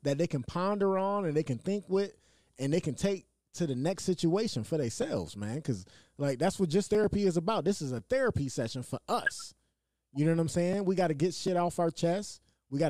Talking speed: 235 wpm